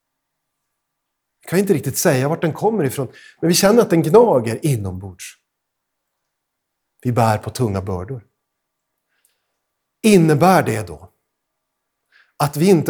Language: Swedish